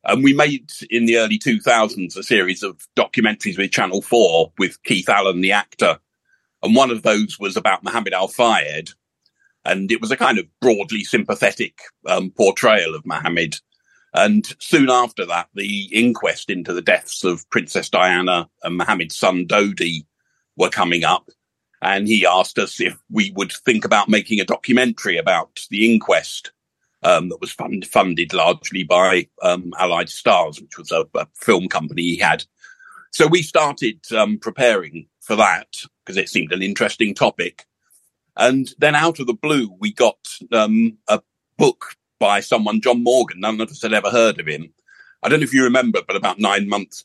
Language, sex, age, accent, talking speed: English, male, 50-69, British, 175 wpm